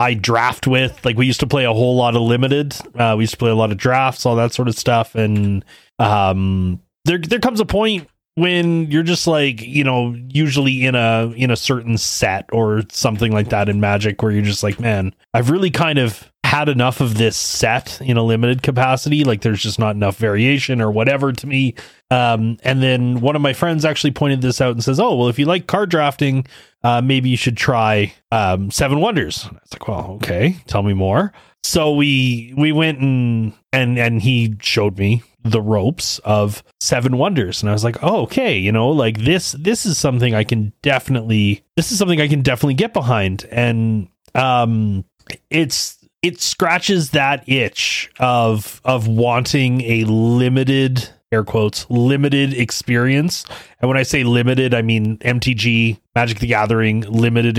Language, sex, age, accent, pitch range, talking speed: English, male, 20-39, American, 110-140 Hz, 195 wpm